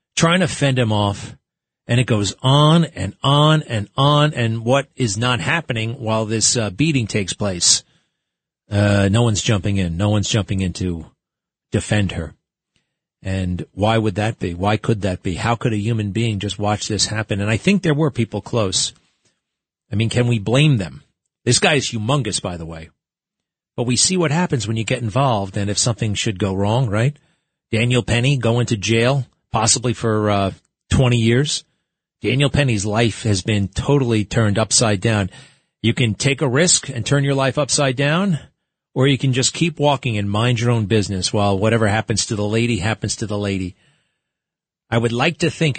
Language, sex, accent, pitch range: English, male, American, 105-140 Hz